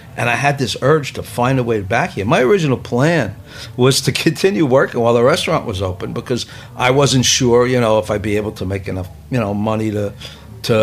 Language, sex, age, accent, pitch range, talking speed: English, male, 60-79, American, 105-130 Hz, 225 wpm